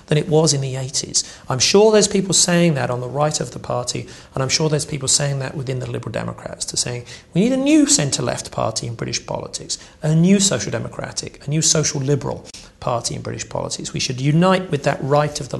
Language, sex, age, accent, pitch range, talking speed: English, male, 40-59, British, 140-175 Hz, 230 wpm